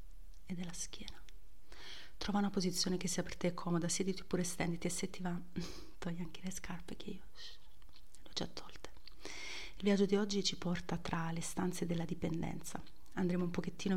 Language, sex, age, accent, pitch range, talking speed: Italian, female, 30-49, native, 170-200 Hz, 175 wpm